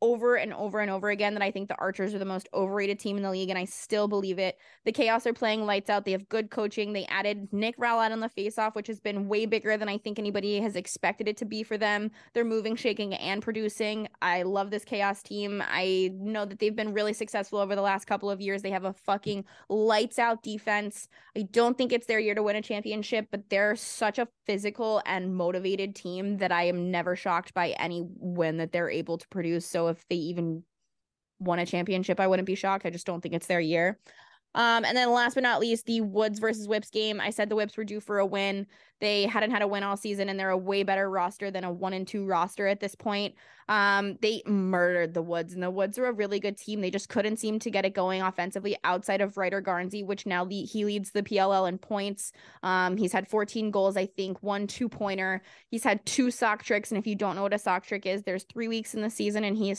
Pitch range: 190-215 Hz